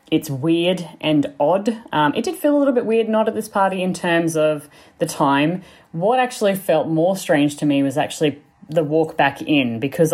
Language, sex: English, female